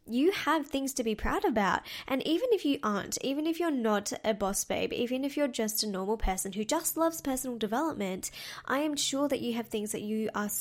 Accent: Australian